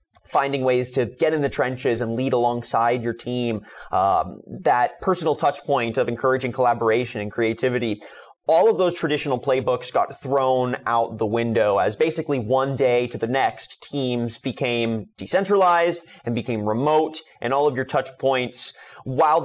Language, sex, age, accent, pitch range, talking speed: English, male, 30-49, American, 120-160 Hz, 160 wpm